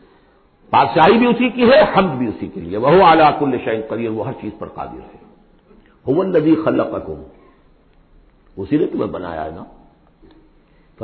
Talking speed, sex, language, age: 170 wpm, male, Urdu, 50-69